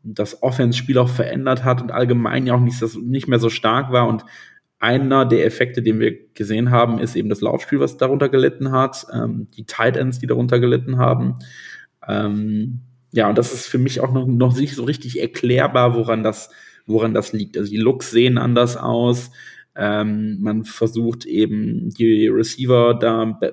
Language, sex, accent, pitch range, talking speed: German, male, German, 110-125 Hz, 185 wpm